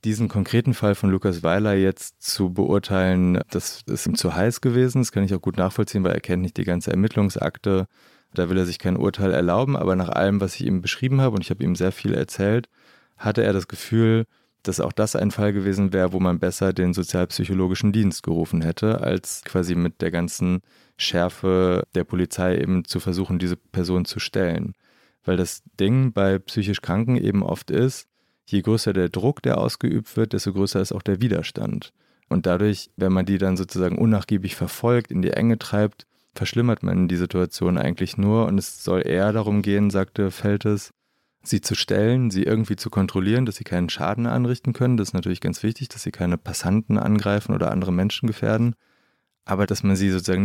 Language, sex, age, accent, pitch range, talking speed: German, male, 30-49, German, 90-105 Hz, 195 wpm